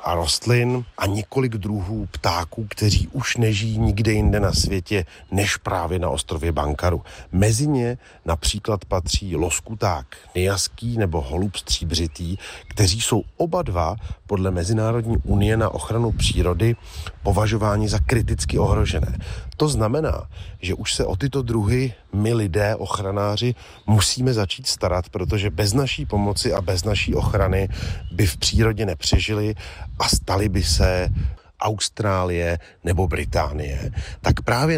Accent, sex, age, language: native, male, 40-59, Czech